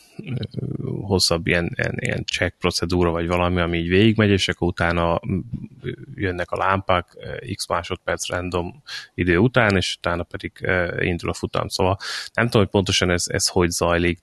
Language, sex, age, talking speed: Hungarian, male, 30-49, 150 wpm